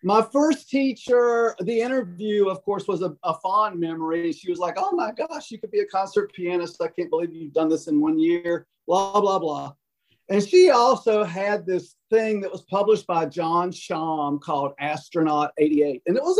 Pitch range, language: 155-200 Hz, English